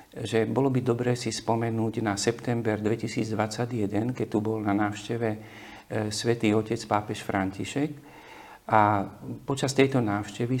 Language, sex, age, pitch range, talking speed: Slovak, male, 50-69, 105-120 Hz, 125 wpm